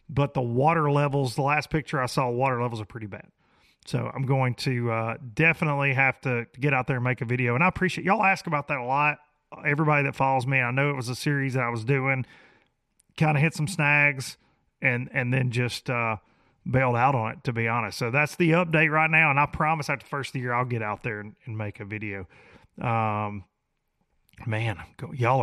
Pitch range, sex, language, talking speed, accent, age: 115-145 Hz, male, English, 225 wpm, American, 30-49